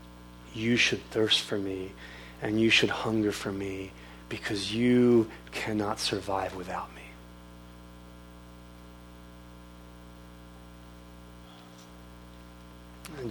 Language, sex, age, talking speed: English, male, 30-49, 80 wpm